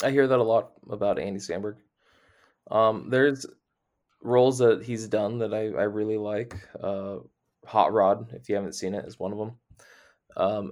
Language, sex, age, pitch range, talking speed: English, male, 20-39, 100-125 Hz, 180 wpm